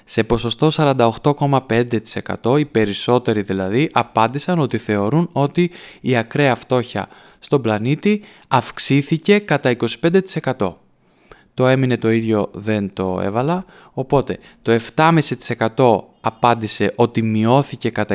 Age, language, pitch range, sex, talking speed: 20-39, Greek, 110-140 Hz, male, 105 wpm